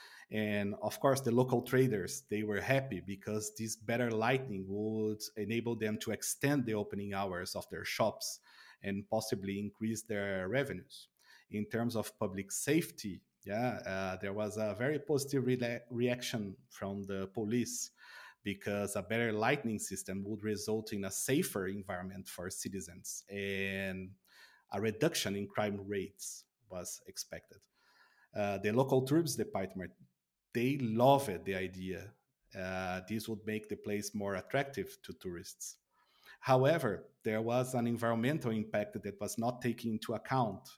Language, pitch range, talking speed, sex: English, 100-120 Hz, 145 wpm, male